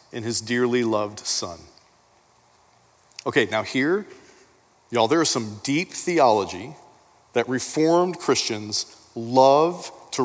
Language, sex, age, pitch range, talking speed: English, male, 40-59, 125-170 Hz, 110 wpm